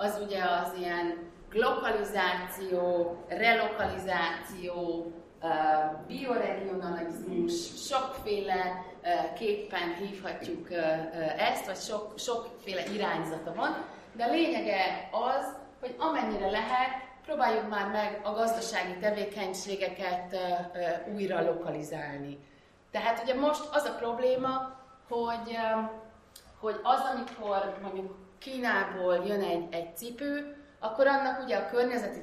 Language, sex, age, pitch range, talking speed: Hungarian, female, 30-49, 175-235 Hz, 95 wpm